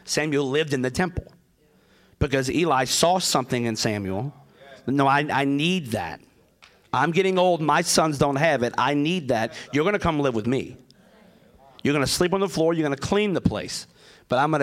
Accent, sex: American, male